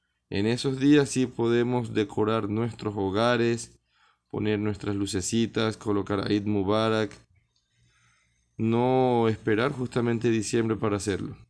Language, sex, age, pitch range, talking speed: Spanish, male, 20-39, 100-115 Hz, 110 wpm